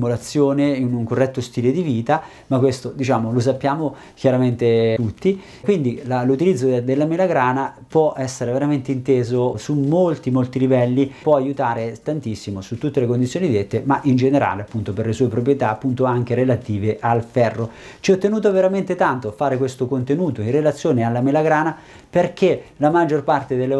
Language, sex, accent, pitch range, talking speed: Italian, male, native, 120-150 Hz, 160 wpm